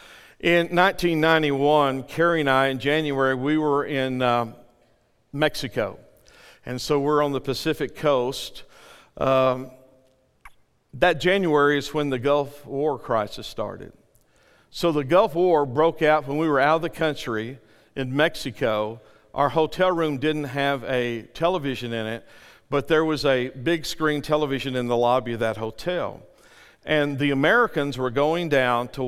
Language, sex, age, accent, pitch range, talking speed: English, male, 50-69, American, 130-155 Hz, 150 wpm